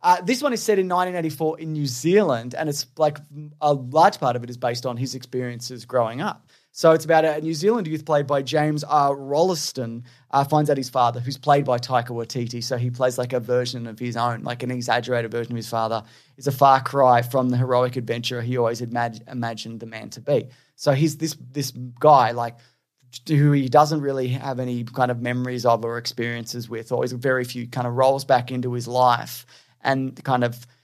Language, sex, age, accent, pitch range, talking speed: English, male, 20-39, Australian, 120-140 Hz, 215 wpm